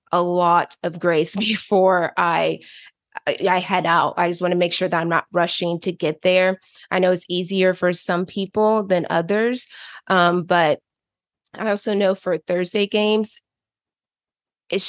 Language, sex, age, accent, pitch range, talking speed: English, female, 20-39, American, 175-195 Hz, 160 wpm